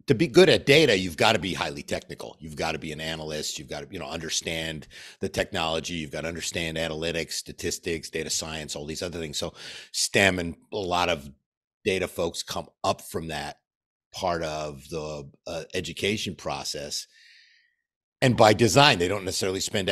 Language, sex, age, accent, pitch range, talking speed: English, male, 50-69, American, 80-105 Hz, 180 wpm